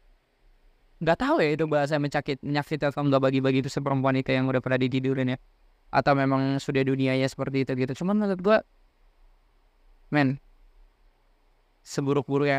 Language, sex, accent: Indonesian, male, native